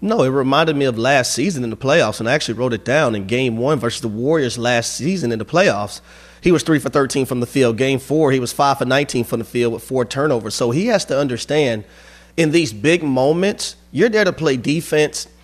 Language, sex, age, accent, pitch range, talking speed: English, male, 30-49, American, 125-160 Hz, 240 wpm